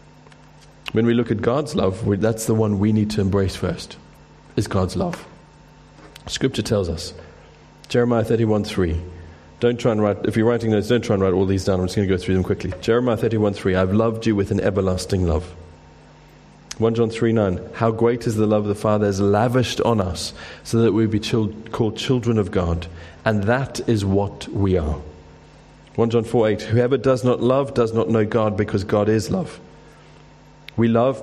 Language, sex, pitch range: English, male, 95-115 Hz